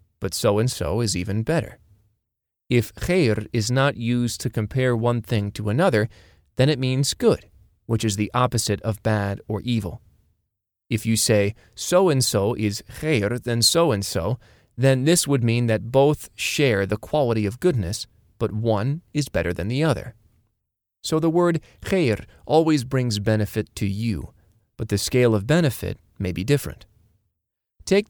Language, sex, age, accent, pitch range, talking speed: English, male, 30-49, American, 105-130 Hz, 155 wpm